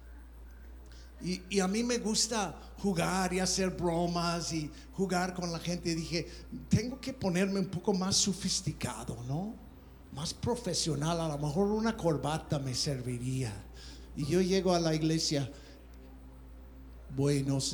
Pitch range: 135-215 Hz